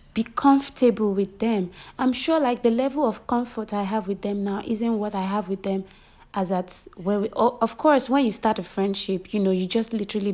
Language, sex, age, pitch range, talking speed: English, female, 30-49, 180-225 Hz, 225 wpm